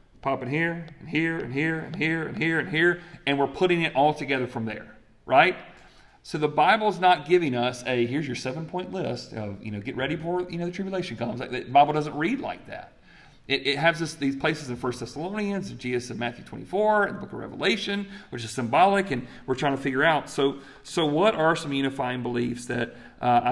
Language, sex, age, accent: English, male, 40-59, American